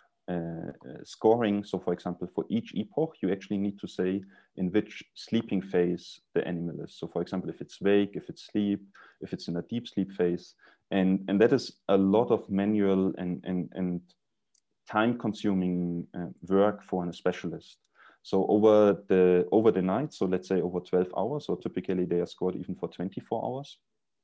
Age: 30-49